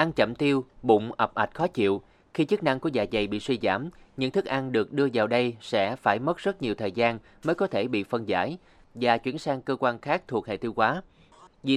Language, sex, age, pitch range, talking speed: Vietnamese, male, 20-39, 105-135 Hz, 245 wpm